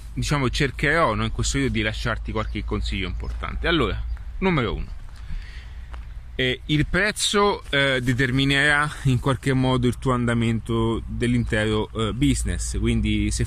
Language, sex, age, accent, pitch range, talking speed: Italian, male, 30-49, native, 100-130 Hz, 135 wpm